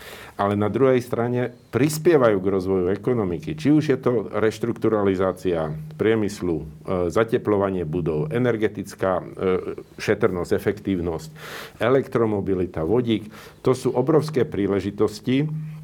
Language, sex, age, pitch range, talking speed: Slovak, male, 50-69, 95-125 Hz, 95 wpm